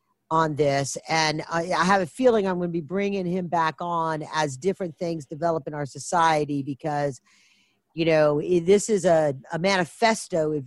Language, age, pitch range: English, 40-59, 155-200 Hz